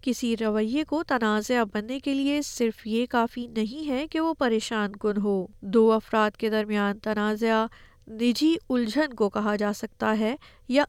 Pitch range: 215-275 Hz